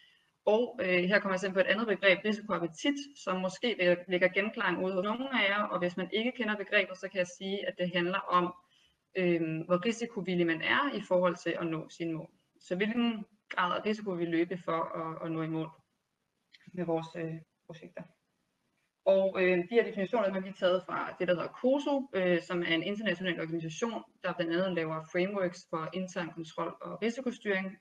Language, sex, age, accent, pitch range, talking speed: Danish, female, 20-39, native, 175-205 Hz, 200 wpm